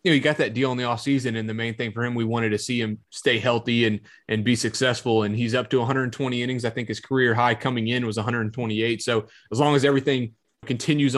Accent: American